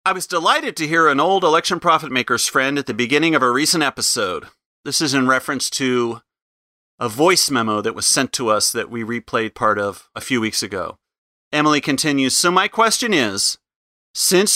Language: English